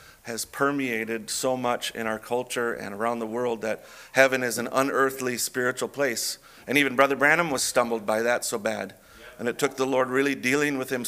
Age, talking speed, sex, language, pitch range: 40-59, 200 wpm, male, English, 115-135 Hz